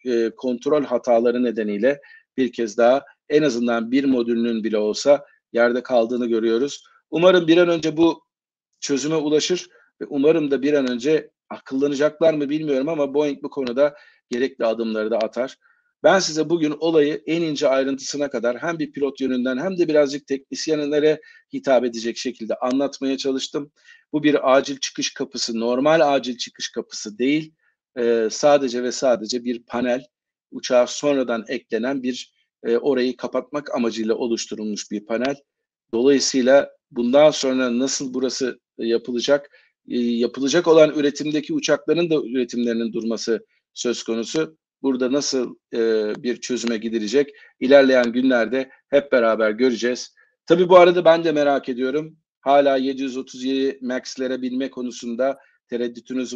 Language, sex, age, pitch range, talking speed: Turkish, male, 40-59, 120-150 Hz, 130 wpm